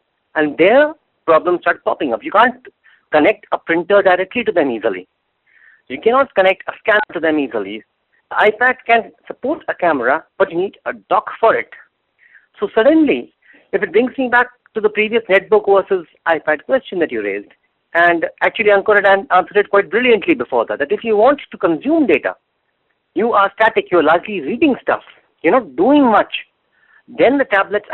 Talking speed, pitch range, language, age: 185 wpm, 135-215 Hz, English, 50-69